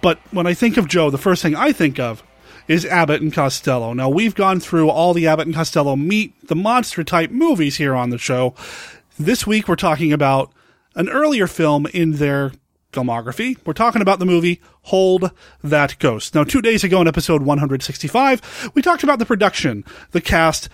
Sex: male